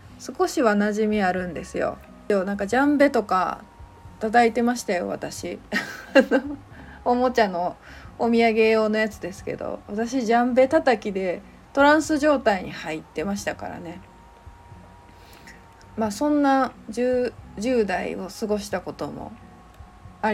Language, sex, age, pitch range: Japanese, female, 20-39, 195-255 Hz